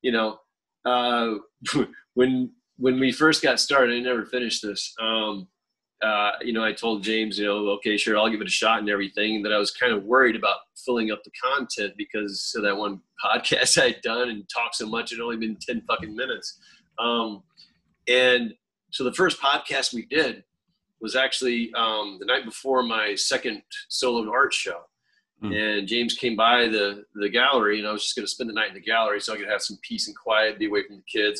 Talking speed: 210 wpm